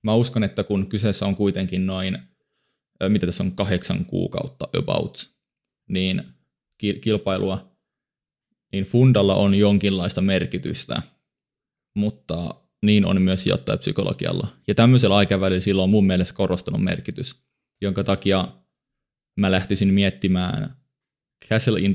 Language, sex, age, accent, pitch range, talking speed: Finnish, male, 20-39, native, 95-110 Hz, 115 wpm